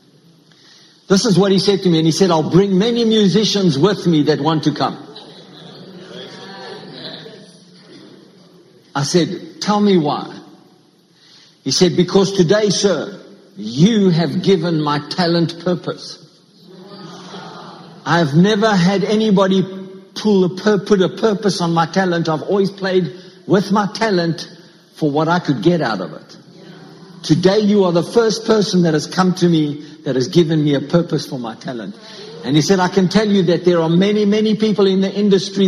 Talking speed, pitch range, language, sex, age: 165 wpm, 160-195 Hz, English, male, 60-79